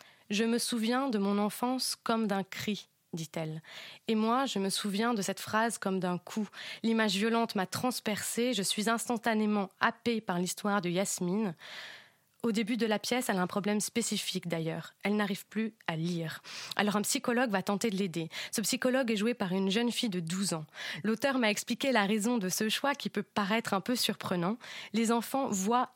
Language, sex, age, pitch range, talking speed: French, female, 20-39, 195-240 Hz, 195 wpm